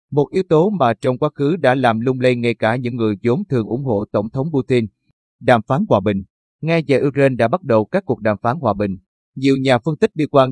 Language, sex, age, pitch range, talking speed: Vietnamese, male, 30-49, 115-140 Hz, 250 wpm